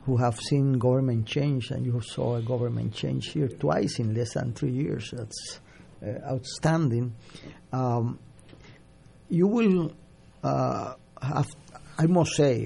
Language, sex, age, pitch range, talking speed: Spanish, male, 50-69, 120-140 Hz, 135 wpm